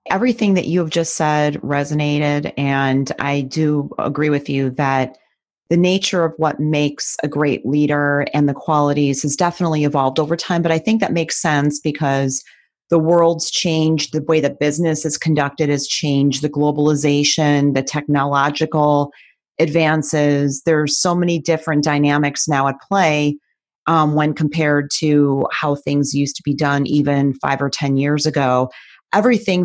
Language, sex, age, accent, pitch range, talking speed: English, female, 30-49, American, 140-160 Hz, 160 wpm